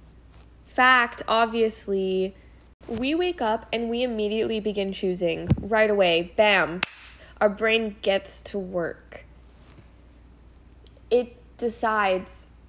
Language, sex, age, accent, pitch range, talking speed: English, female, 10-29, American, 185-225 Hz, 95 wpm